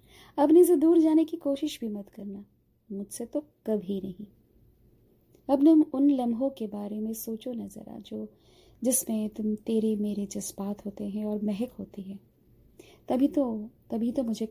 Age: 20-39